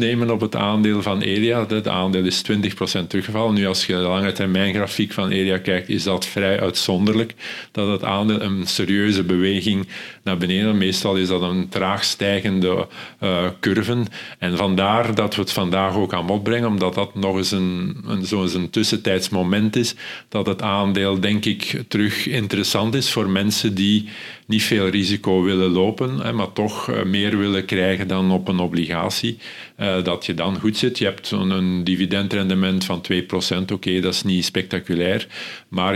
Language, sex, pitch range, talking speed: Dutch, male, 95-105 Hz, 175 wpm